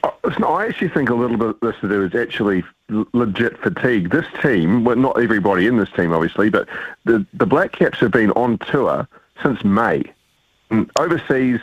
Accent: Australian